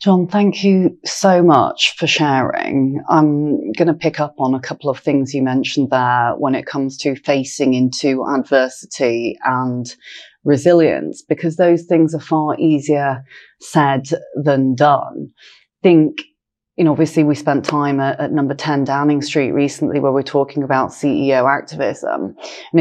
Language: English